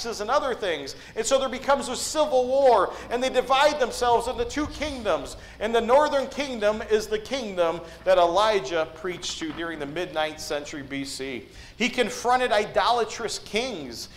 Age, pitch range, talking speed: 40-59, 205-290 Hz, 155 wpm